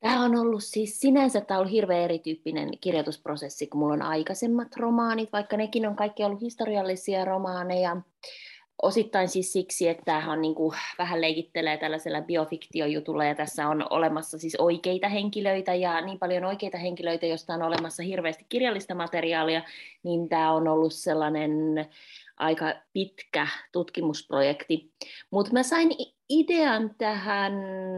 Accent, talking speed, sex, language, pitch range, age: native, 135 wpm, female, Finnish, 160-215 Hz, 20-39